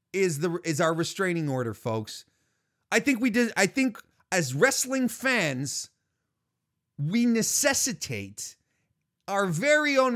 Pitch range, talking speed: 160-260 Hz, 125 wpm